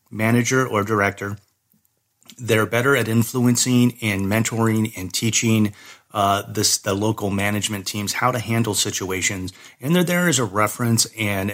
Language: English